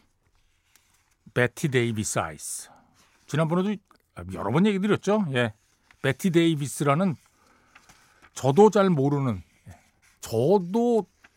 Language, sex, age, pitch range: Korean, male, 60-79, 115-180 Hz